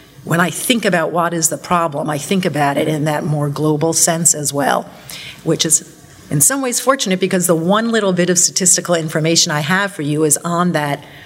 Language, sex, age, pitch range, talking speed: English, female, 50-69, 150-175 Hz, 215 wpm